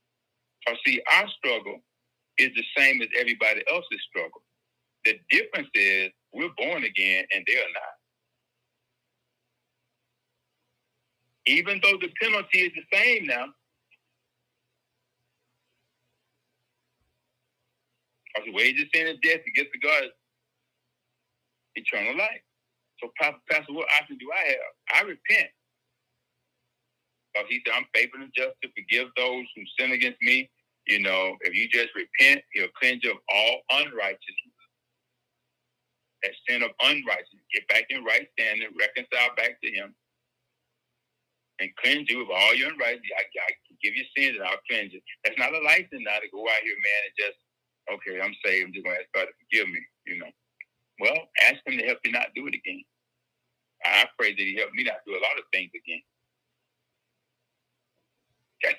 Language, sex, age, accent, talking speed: English, male, 60-79, American, 160 wpm